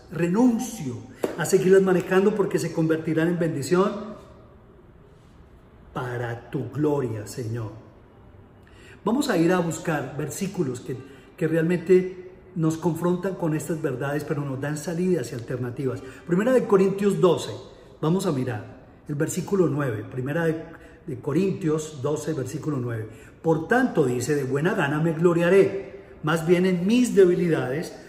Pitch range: 130-175 Hz